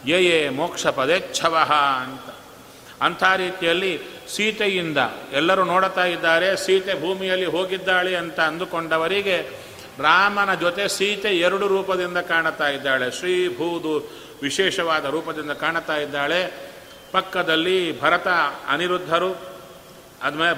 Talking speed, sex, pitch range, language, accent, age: 90 wpm, male, 155-190 Hz, Kannada, native, 40-59